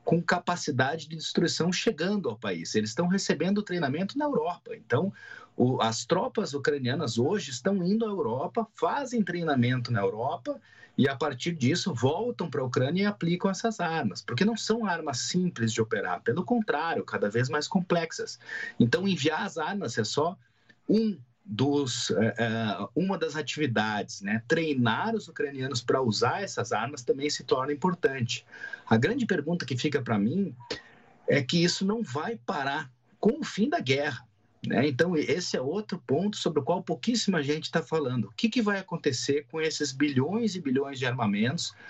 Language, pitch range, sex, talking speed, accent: Portuguese, 130-195 Hz, male, 170 wpm, Brazilian